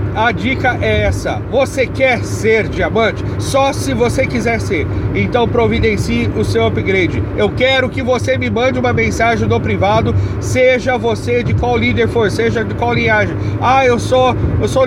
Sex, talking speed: male, 170 wpm